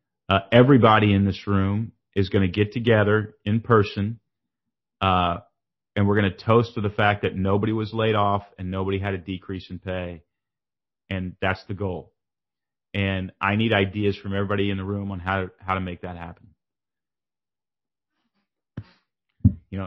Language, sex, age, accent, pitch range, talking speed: English, male, 30-49, American, 95-110 Hz, 165 wpm